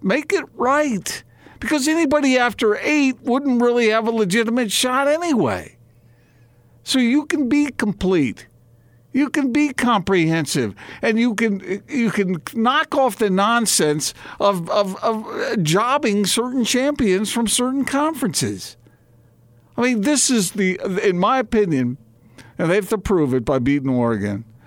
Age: 50-69